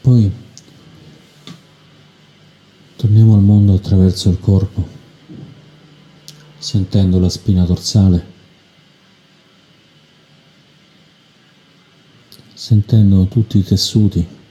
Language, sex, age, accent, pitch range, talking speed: Italian, male, 50-69, native, 90-150 Hz, 60 wpm